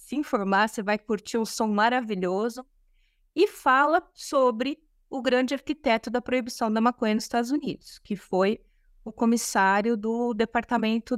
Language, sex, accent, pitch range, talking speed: Portuguese, female, Brazilian, 190-245 Hz, 145 wpm